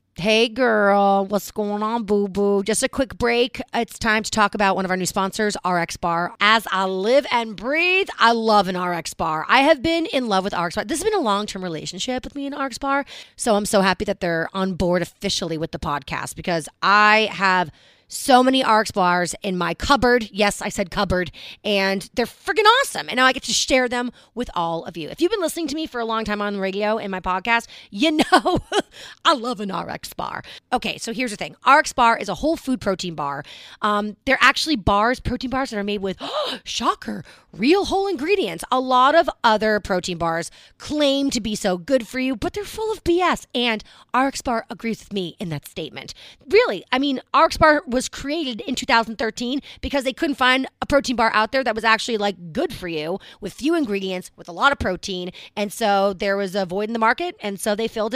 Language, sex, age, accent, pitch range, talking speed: English, female, 30-49, American, 190-260 Hz, 225 wpm